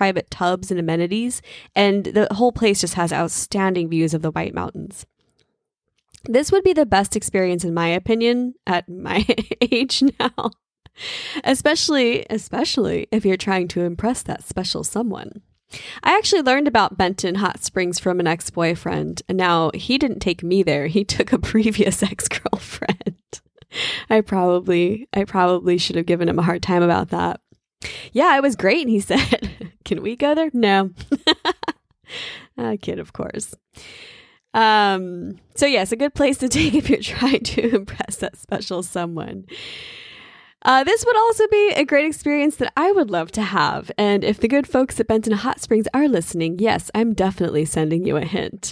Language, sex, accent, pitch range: English, female, American, 180-265 Hz